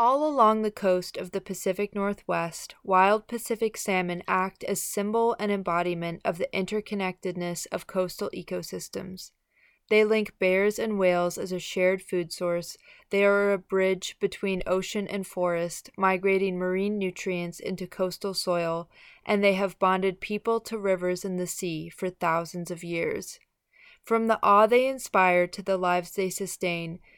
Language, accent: English, American